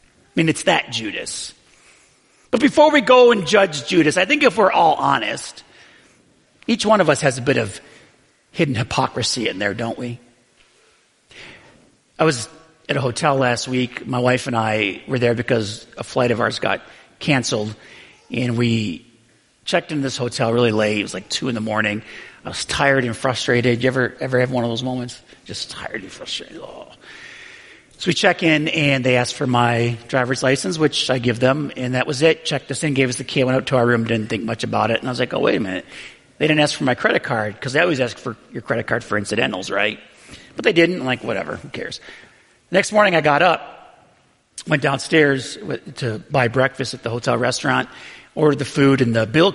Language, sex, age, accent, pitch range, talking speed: English, male, 40-59, American, 120-155 Hz, 210 wpm